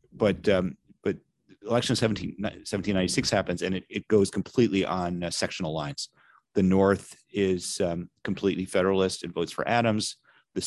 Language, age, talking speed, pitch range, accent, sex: English, 40-59, 150 wpm, 85-95 Hz, American, male